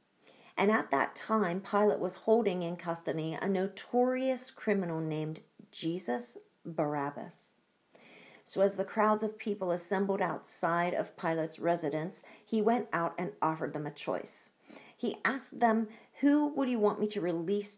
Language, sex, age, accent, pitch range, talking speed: English, female, 40-59, American, 170-215 Hz, 150 wpm